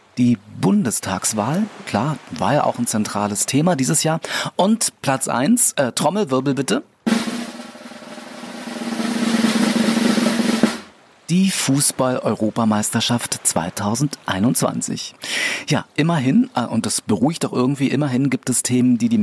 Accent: German